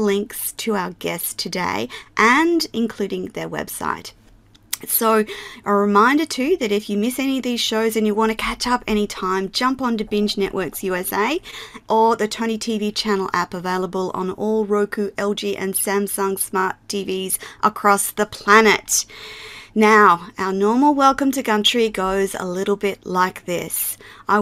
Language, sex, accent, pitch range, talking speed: English, female, Australian, 190-225 Hz, 155 wpm